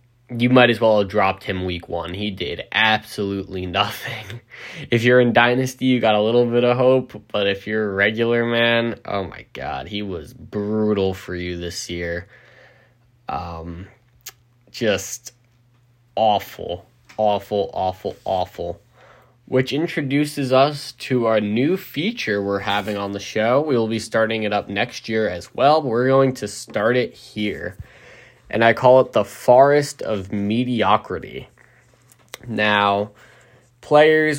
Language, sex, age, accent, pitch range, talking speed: English, male, 10-29, American, 105-130 Hz, 145 wpm